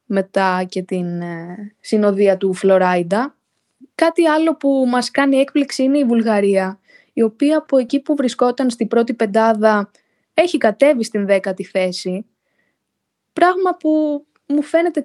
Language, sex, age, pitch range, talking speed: Greek, female, 20-39, 200-270 Hz, 130 wpm